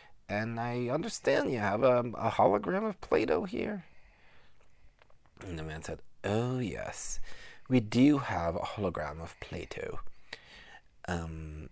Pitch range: 80-105 Hz